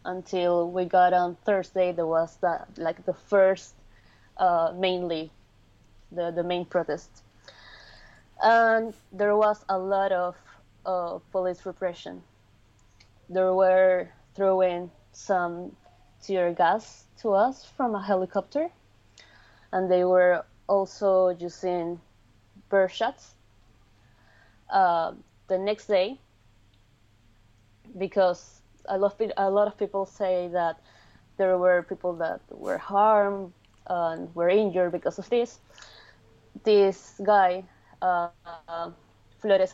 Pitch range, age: 115-195 Hz, 20-39